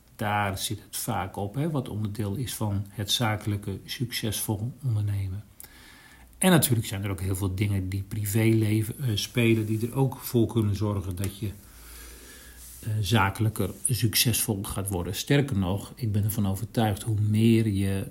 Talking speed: 155 wpm